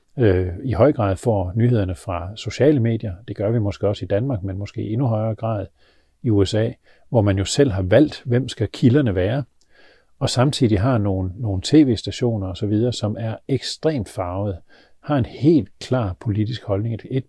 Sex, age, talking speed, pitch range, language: male, 40-59, 175 wpm, 100-125 Hz, Danish